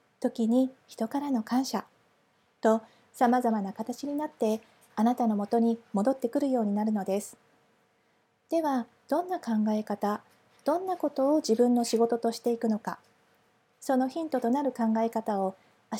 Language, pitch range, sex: Japanese, 220-285 Hz, female